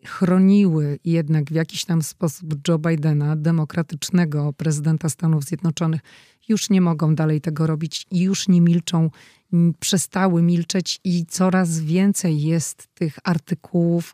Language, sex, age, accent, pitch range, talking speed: Polish, female, 30-49, native, 160-180 Hz, 125 wpm